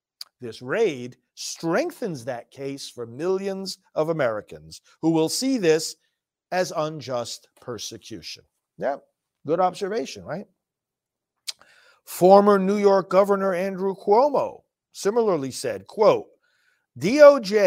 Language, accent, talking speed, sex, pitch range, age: English, American, 100 wpm, male, 140-200 Hz, 50-69